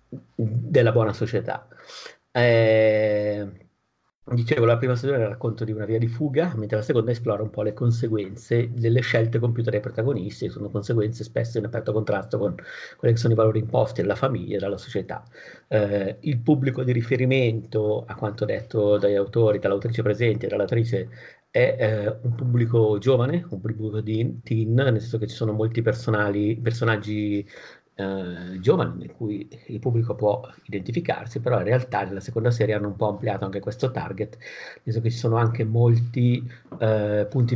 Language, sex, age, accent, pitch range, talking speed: Italian, male, 50-69, native, 105-120 Hz, 175 wpm